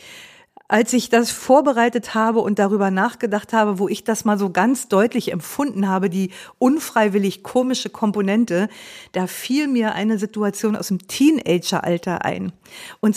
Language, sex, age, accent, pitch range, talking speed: German, female, 50-69, German, 200-245 Hz, 145 wpm